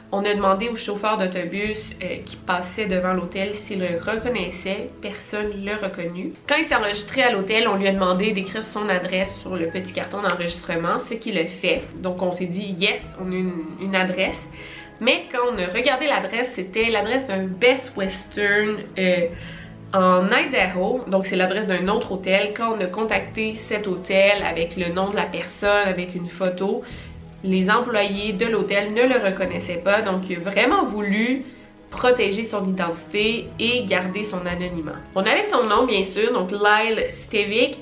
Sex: female